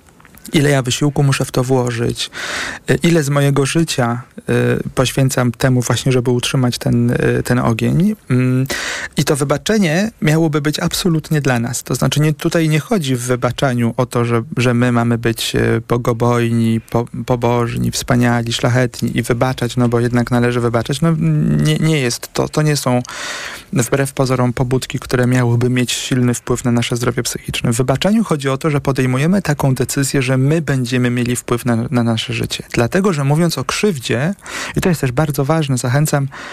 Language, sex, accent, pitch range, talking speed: Polish, male, native, 125-150 Hz, 170 wpm